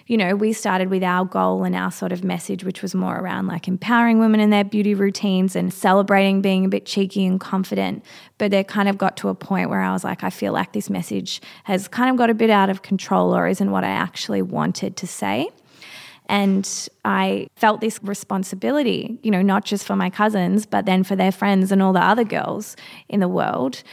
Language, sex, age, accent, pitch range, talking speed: English, female, 20-39, Australian, 175-205 Hz, 225 wpm